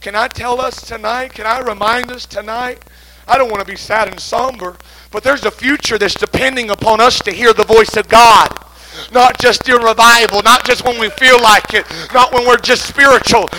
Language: English